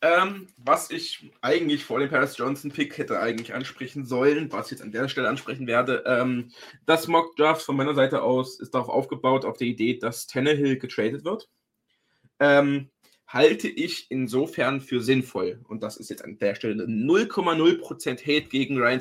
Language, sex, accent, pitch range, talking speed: German, male, German, 130-165 Hz, 165 wpm